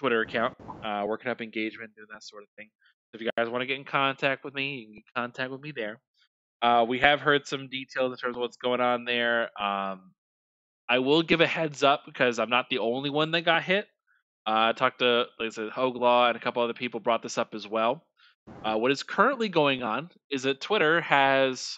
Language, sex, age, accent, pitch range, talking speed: English, male, 20-39, American, 110-135 Hz, 235 wpm